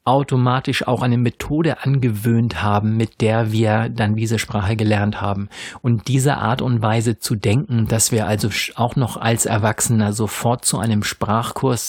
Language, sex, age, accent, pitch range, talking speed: German, male, 50-69, German, 110-130 Hz, 160 wpm